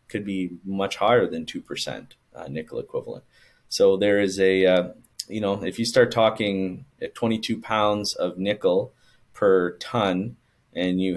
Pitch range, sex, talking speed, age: 95-120 Hz, male, 155 wpm, 20-39